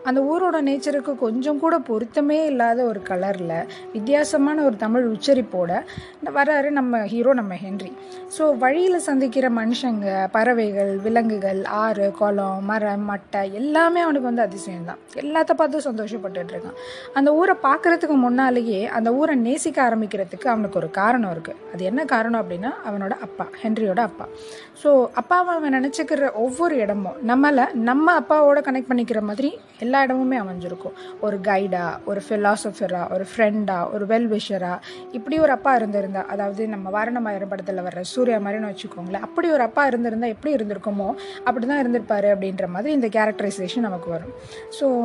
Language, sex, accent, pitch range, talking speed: Tamil, female, native, 200-275 Hz, 120 wpm